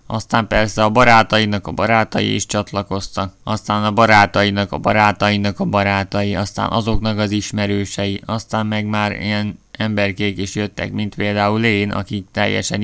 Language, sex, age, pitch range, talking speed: Hungarian, male, 20-39, 100-110 Hz, 145 wpm